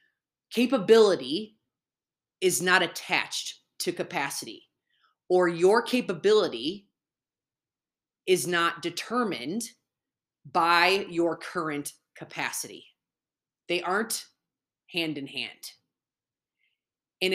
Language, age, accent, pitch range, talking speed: English, 20-39, American, 150-200 Hz, 75 wpm